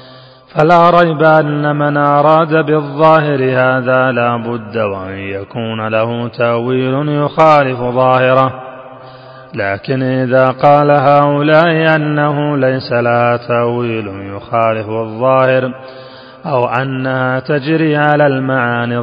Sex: male